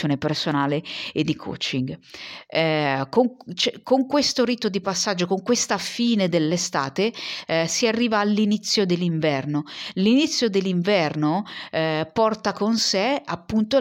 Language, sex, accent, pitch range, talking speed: Italian, female, native, 150-190 Hz, 110 wpm